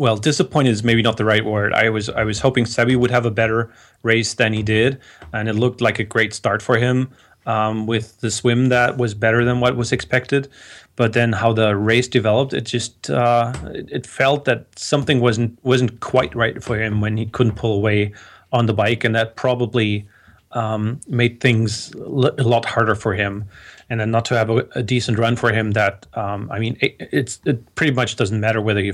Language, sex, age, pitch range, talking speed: English, male, 30-49, 105-120 Hz, 220 wpm